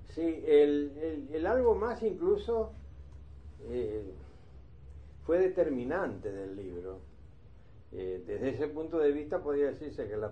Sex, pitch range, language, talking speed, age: male, 90-130 Hz, Spanish, 130 wpm, 60-79